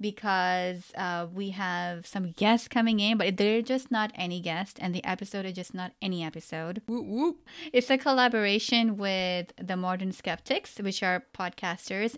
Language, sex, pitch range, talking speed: English, female, 175-225 Hz, 160 wpm